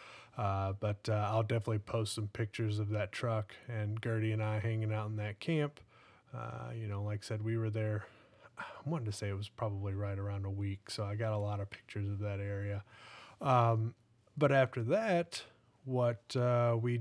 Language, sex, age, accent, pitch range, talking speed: English, male, 30-49, American, 110-120 Hz, 200 wpm